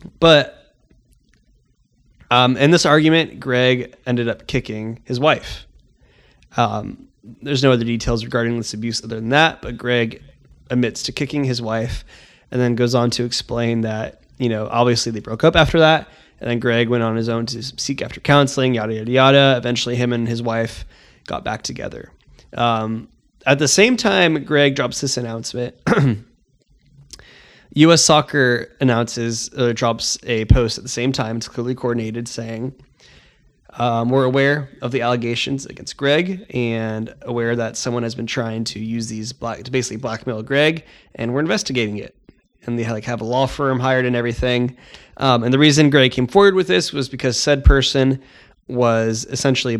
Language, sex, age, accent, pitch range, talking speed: English, male, 20-39, American, 115-135 Hz, 170 wpm